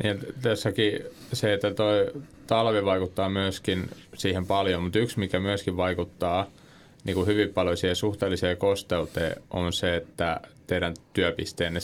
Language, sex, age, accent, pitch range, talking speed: Finnish, male, 30-49, native, 90-100 Hz, 135 wpm